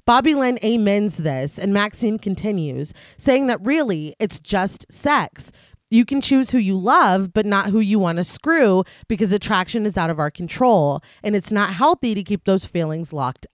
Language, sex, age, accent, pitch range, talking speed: English, female, 30-49, American, 180-240 Hz, 185 wpm